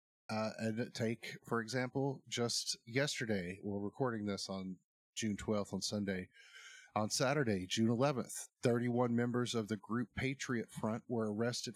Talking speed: 145 wpm